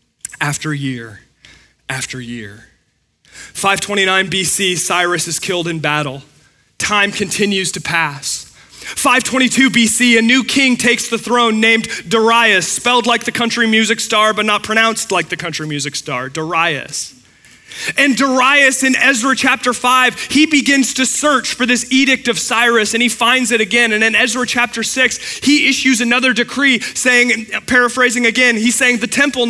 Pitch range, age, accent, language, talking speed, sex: 195-245 Hz, 30-49, American, English, 155 wpm, male